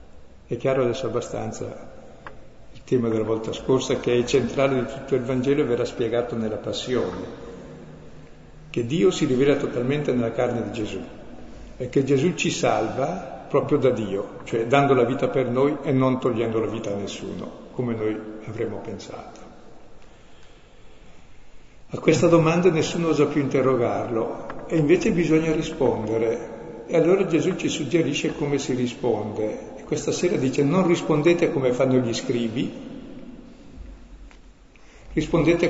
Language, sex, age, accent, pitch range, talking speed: Italian, male, 60-79, native, 115-150 Hz, 140 wpm